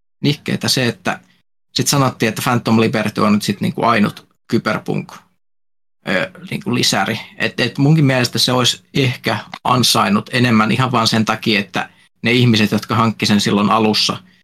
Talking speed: 150 wpm